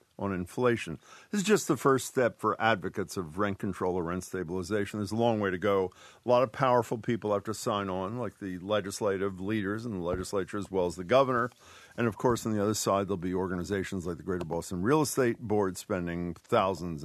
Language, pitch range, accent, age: English, 95-130 Hz, American, 50-69